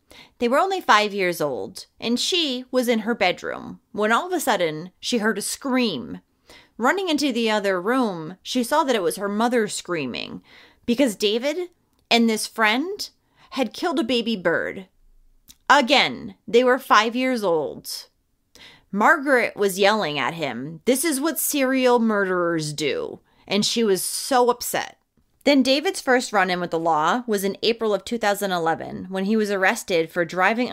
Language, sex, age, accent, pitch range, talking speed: English, female, 30-49, American, 195-265 Hz, 165 wpm